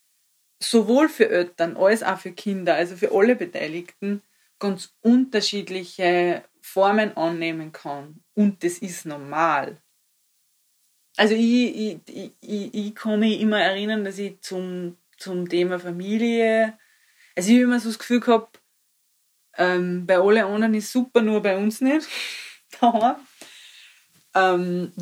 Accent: German